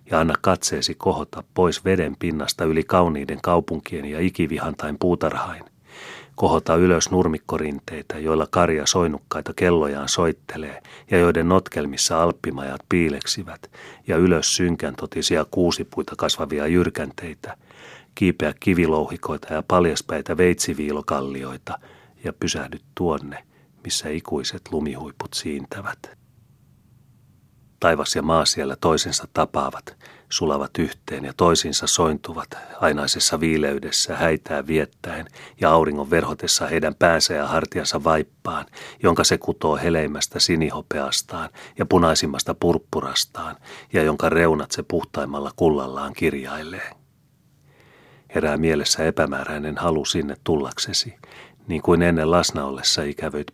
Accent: native